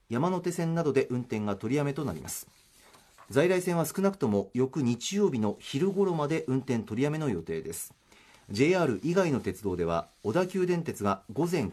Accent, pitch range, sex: native, 110-160 Hz, male